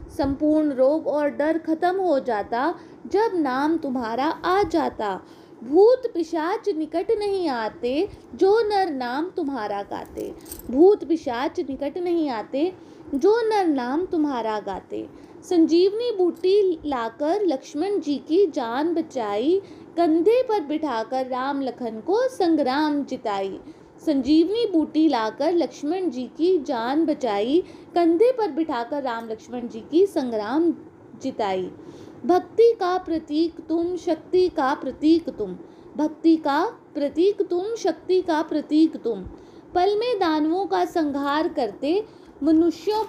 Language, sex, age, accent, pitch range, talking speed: Hindi, female, 20-39, native, 275-360 Hz, 125 wpm